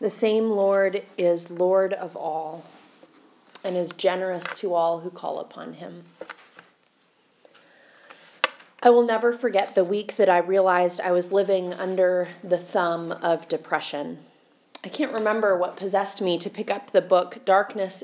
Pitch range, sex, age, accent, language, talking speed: 170-200 Hz, female, 30-49, American, English, 150 wpm